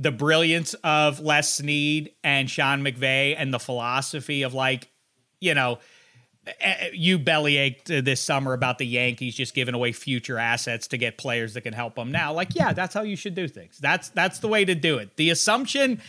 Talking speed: 200 wpm